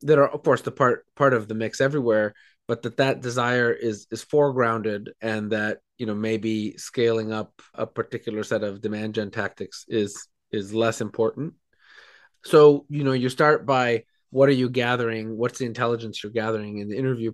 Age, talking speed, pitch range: 20-39, 185 wpm, 110-130 Hz